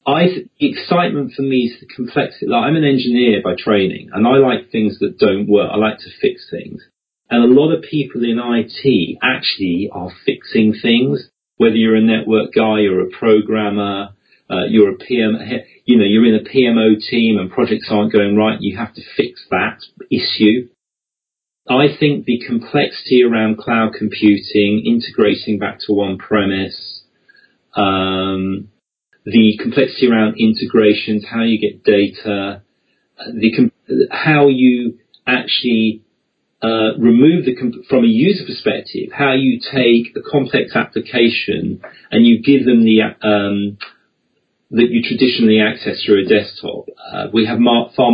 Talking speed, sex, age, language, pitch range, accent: 150 wpm, male, 40-59, English, 105-125 Hz, British